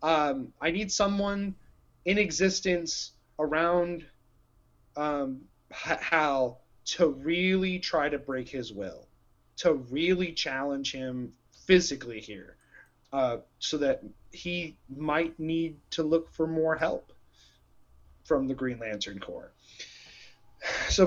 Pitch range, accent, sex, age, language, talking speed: 125-165 Hz, American, male, 30-49, English, 110 wpm